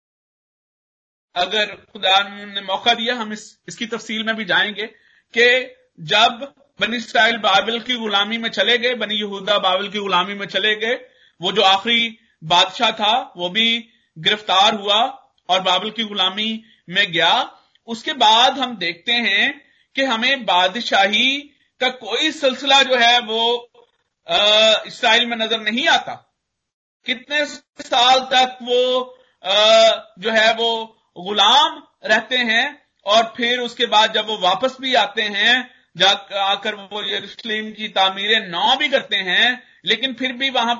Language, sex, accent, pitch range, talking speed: Hindi, male, native, 215-255 Hz, 140 wpm